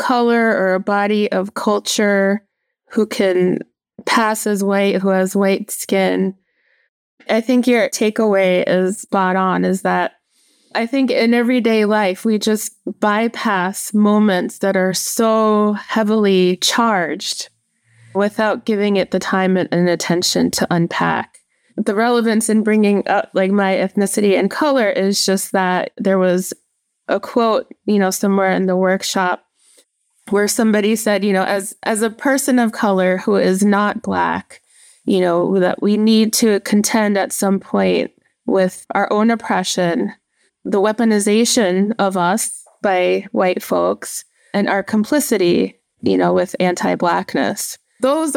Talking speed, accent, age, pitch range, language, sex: 140 wpm, American, 20-39, 190-220 Hz, English, female